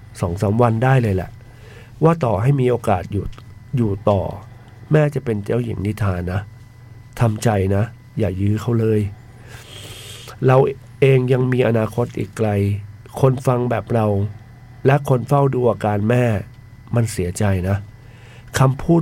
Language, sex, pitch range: Thai, male, 105-130 Hz